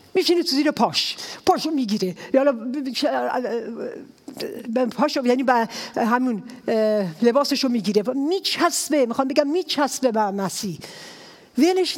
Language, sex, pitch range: English, female, 200-285 Hz